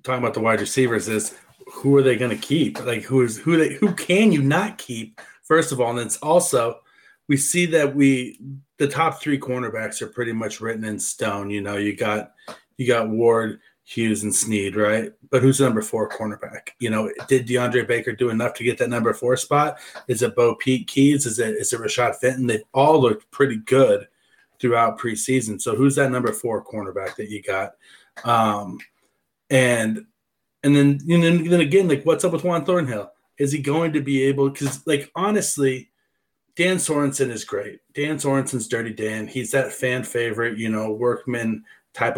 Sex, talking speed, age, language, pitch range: male, 200 wpm, 30-49, English, 110-140 Hz